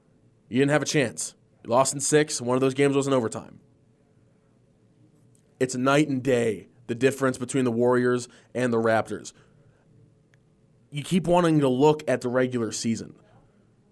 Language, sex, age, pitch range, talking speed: English, male, 20-39, 125-165 Hz, 160 wpm